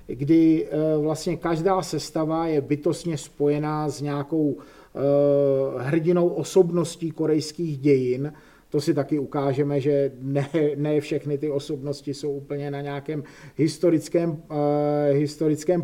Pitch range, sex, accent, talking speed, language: 145-185 Hz, male, native, 115 wpm, Czech